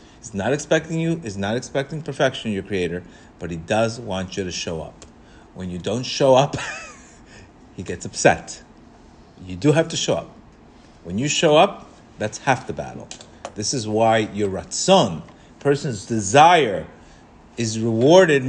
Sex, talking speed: male, 165 wpm